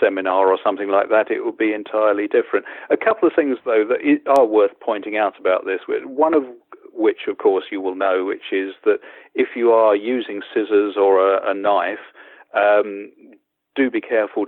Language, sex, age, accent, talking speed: English, male, 50-69, British, 190 wpm